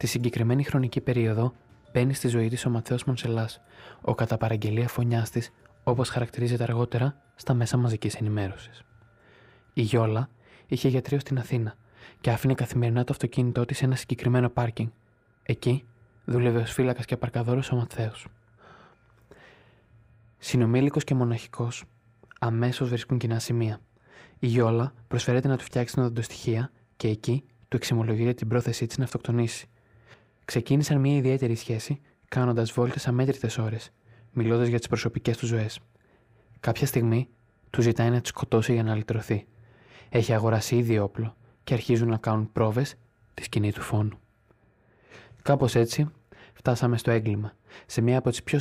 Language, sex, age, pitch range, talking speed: Greek, male, 20-39, 115-125 Hz, 145 wpm